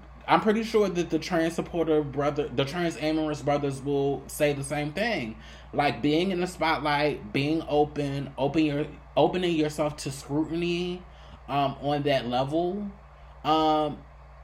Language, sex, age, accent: English, male, 20-39, American